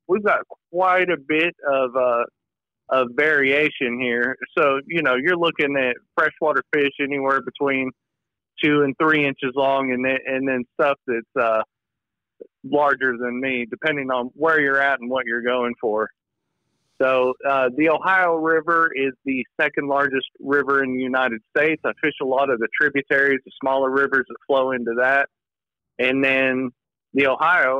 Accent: American